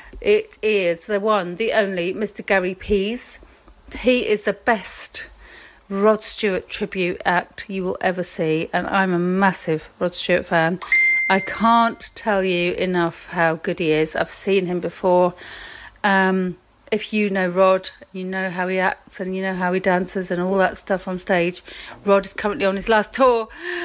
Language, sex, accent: English, female, British